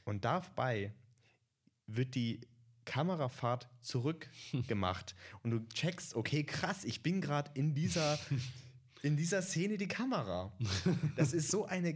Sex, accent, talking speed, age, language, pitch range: male, German, 125 wpm, 20-39, German, 110-140 Hz